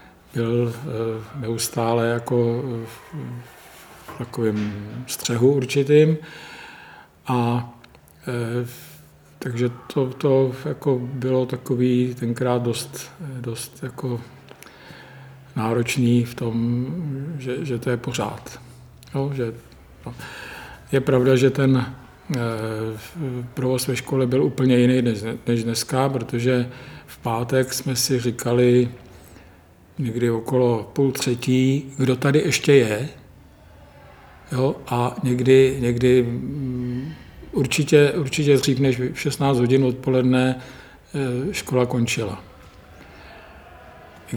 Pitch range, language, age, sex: 120-130 Hz, Czech, 50-69, male